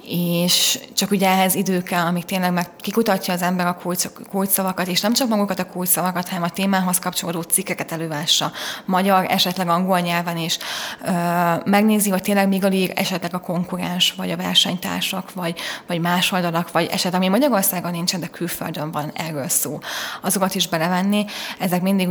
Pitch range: 175-195 Hz